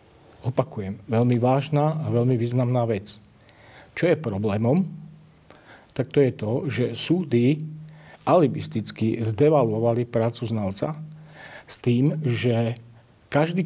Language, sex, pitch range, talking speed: Slovak, male, 115-145 Hz, 105 wpm